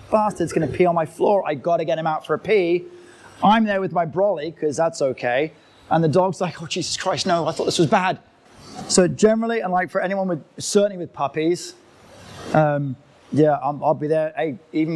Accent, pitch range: British, 150-190 Hz